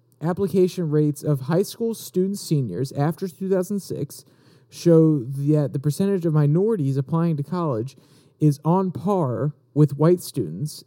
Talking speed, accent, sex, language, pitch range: 135 wpm, American, male, English, 140-165 Hz